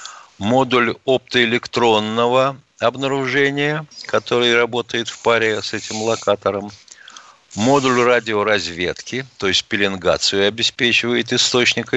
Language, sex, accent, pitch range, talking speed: Russian, male, native, 105-140 Hz, 85 wpm